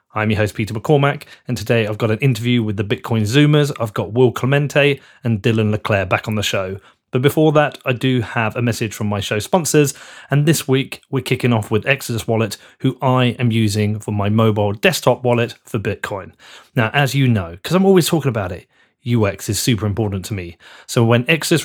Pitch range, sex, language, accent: 110-145 Hz, male, English, British